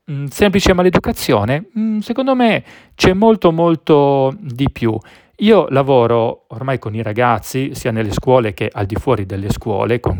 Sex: male